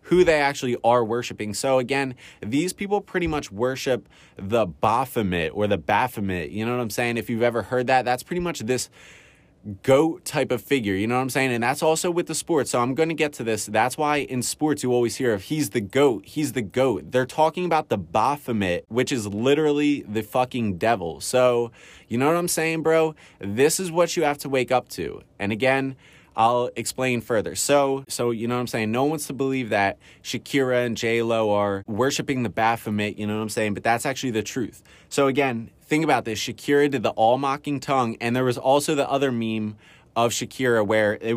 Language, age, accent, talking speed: English, 20-39, American, 215 wpm